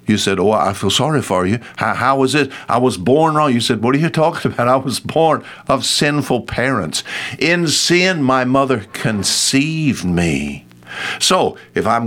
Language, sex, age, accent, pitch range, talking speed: English, male, 60-79, American, 100-150 Hz, 190 wpm